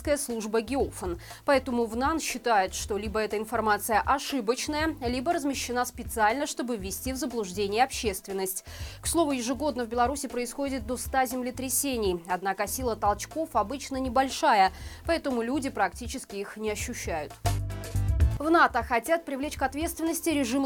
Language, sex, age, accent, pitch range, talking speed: Russian, female, 20-39, native, 215-275 Hz, 130 wpm